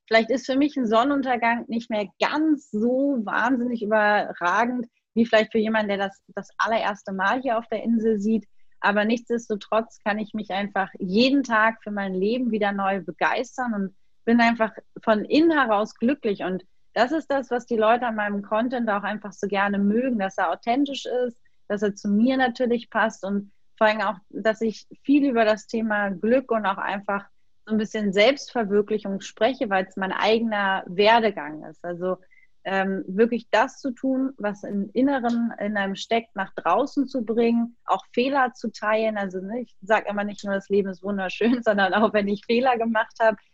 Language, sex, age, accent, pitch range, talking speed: German, female, 30-49, German, 200-240 Hz, 185 wpm